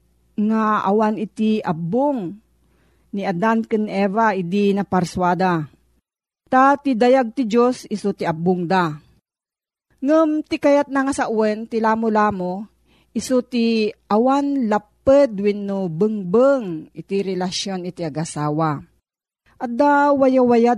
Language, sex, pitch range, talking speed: Filipino, female, 185-245 Hz, 105 wpm